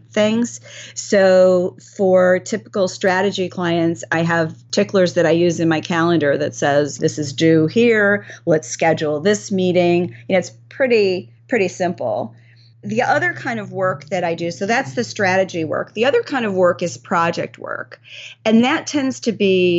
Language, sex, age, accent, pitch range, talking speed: English, female, 40-59, American, 155-185 Hz, 165 wpm